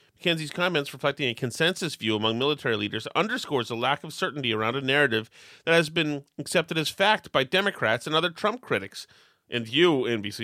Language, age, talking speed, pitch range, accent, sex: English, 30-49, 185 wpm, 125-165 Hz, American, male